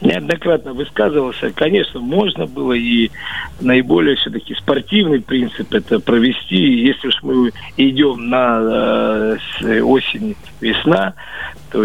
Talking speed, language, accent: 100 wpm, Russian, native